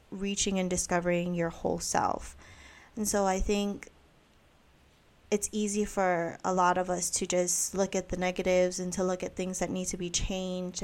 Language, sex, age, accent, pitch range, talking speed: English, female, 20-39, American, 175-195 Hz, 185 wpm